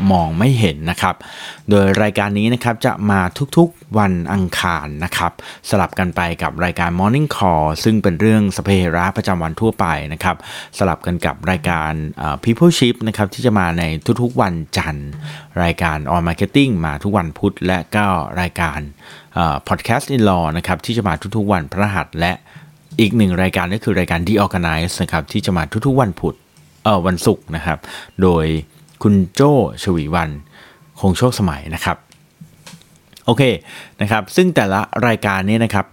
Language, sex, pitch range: Thai, male, 85-110 Hz